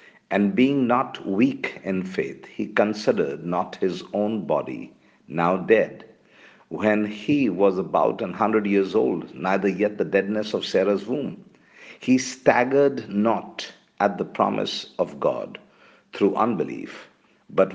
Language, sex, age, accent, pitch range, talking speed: English, male, 50-69, Indian, 90-125 Hz, 135 wpm